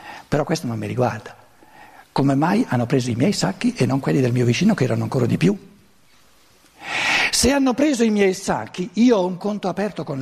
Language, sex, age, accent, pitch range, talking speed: Italian, male, 60-79, native, 145-220 Hz, 205 wpm